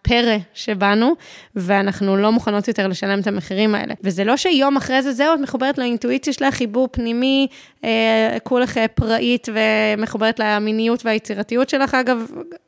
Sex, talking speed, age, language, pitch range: female, 140 wpm, 20-39, Hebrew, 195-255 Hz